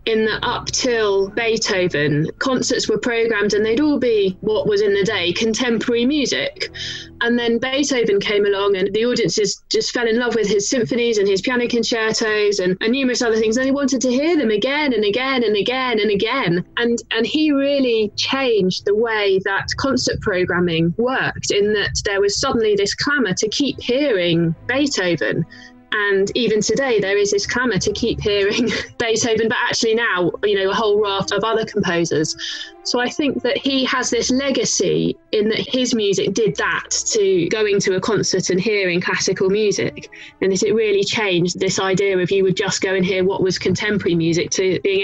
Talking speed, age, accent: 190 wpm, 20-39, British